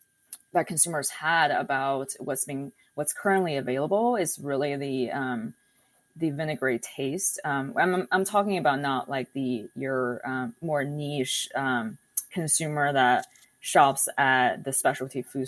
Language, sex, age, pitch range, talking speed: English, female, 20-39, 130-170 Hz, 140 wpm